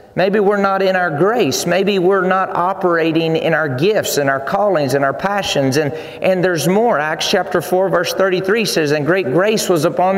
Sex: male